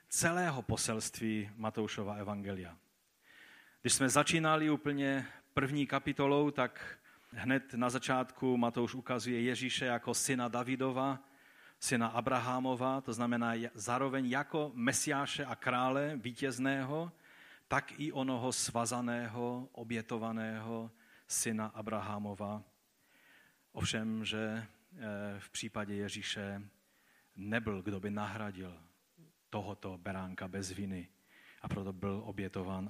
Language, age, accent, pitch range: Czech, 40-59, native, 105-135 Hz